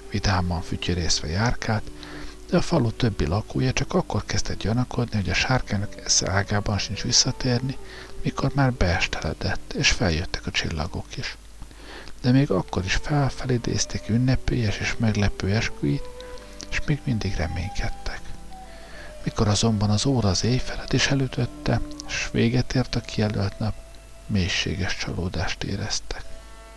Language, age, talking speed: Hungarian, 50-69, 125 wpm